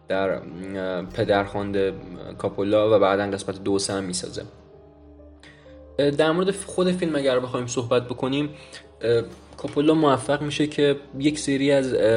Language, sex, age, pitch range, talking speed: Persian, male, 20-39, 100-125 Hz, 125 wpm